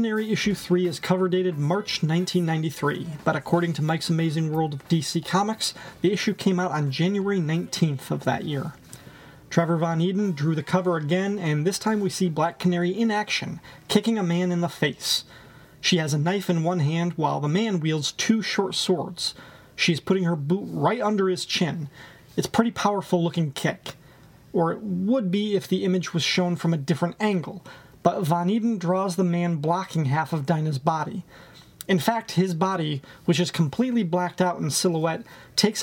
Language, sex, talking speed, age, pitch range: English, male, 190 wpm, 30-49, 160-195 Hz